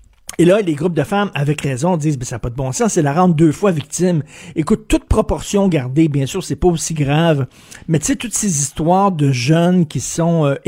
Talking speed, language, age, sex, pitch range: 245 wpm, French, 50-69, male, 150-195 Hz